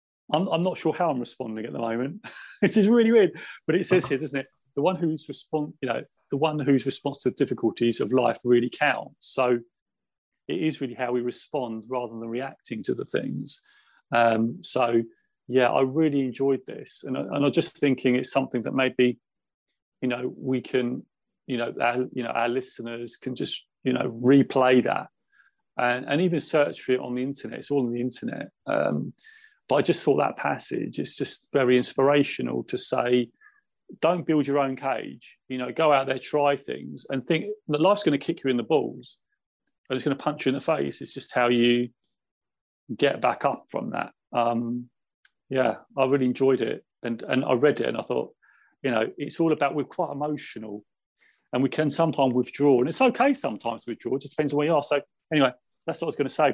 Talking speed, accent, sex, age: 215 wpm, British, male, 30-49